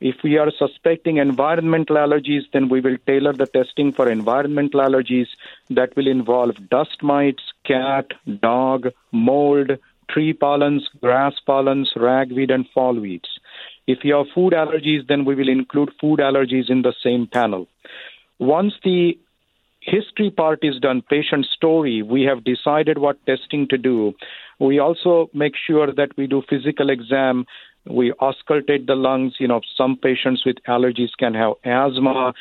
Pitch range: 130-155 Hz